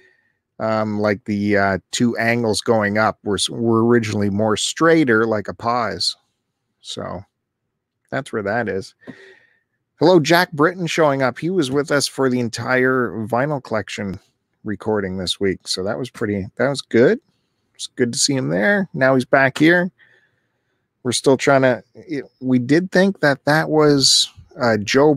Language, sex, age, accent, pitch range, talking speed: English, male, 40-59, American, 110-150 Hz, 160 wpm